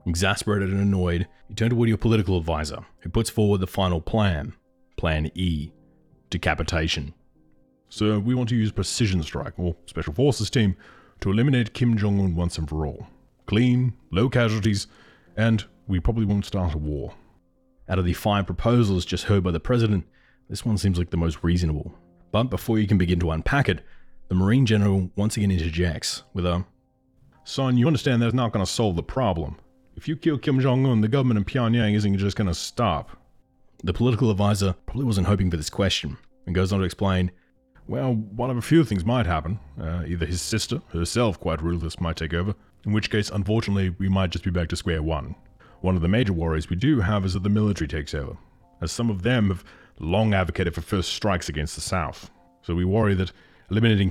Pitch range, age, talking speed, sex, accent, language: 85-110 Hz, 30-49, 200 wpm, male, Australian, English